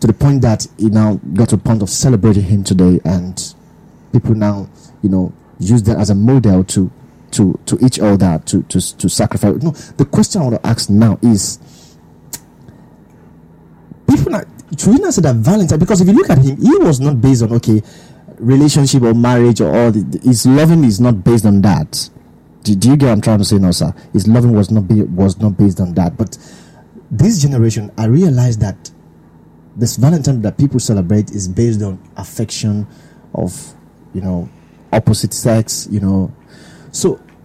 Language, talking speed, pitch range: English, 185 wpm, 90-120 Hz